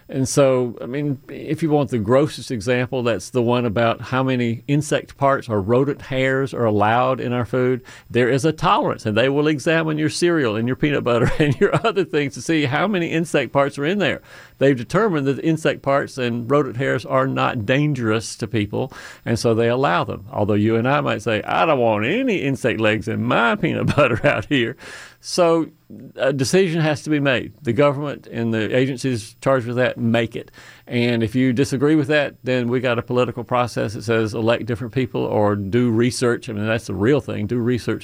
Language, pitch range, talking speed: English, 115-140 Hz, 210 wpm